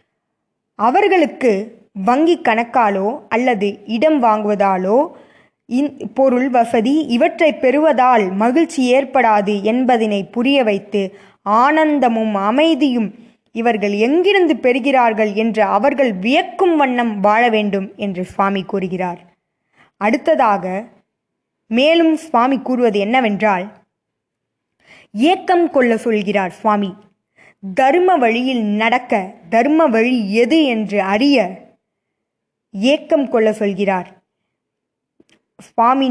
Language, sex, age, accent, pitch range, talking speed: Tamil, female, 20-39, native, 210-285 Hz, 85 wpm